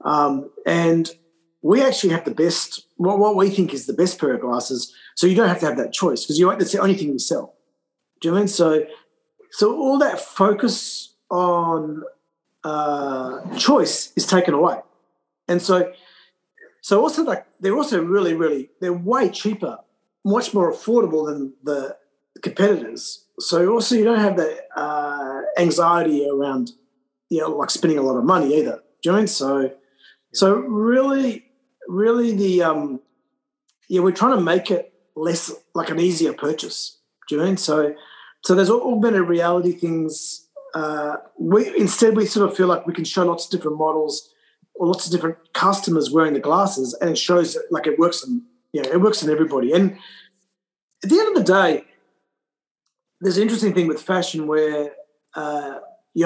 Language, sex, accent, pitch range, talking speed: English, male, Australian, 155-210 Hz, 185 wpm